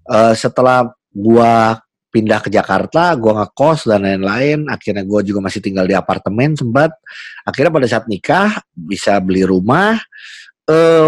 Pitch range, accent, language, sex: 115-180 Hz, native, Indonesian, male